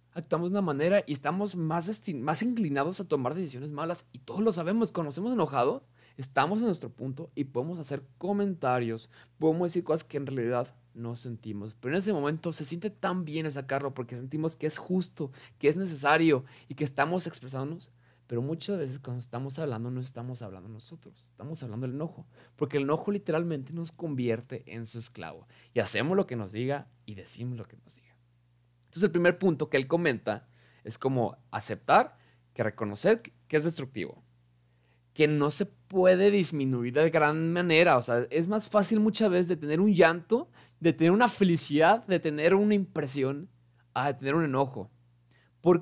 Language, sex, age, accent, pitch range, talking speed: Spanish, male, 20-39, Mexican, 125-180 Hz, 185 wpm